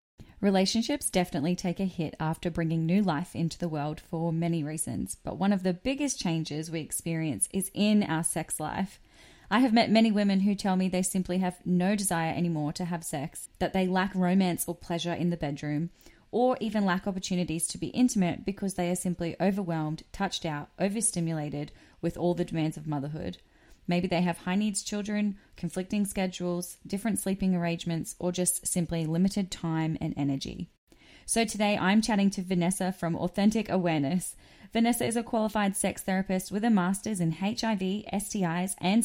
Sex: female